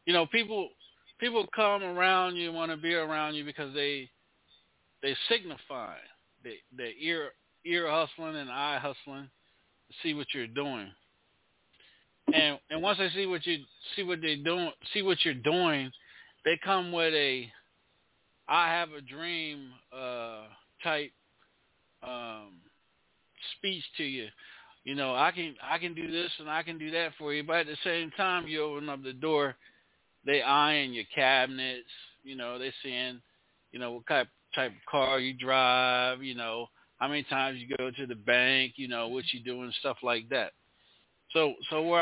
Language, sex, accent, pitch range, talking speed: English, male, American, 130-170 Hz, 170 wpm